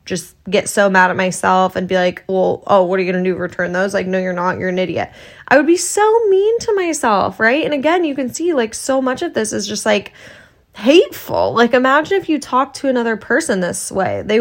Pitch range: 185-260 Hz